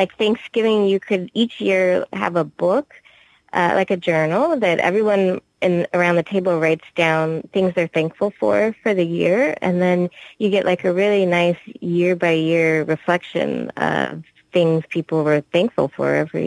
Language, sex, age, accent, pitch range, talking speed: English, female, 20-39, American, 165-195 Hz, 170 wpm